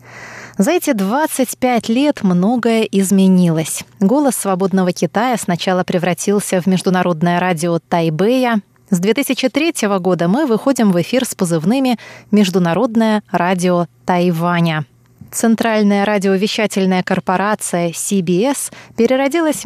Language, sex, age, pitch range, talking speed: Russian, female, 20-39, 175-225 Hz, 100 wpm